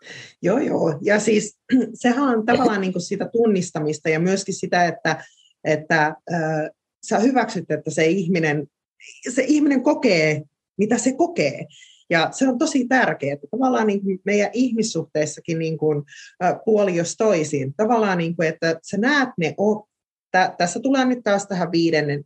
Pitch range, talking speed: 150-215 Hz, 160 wpm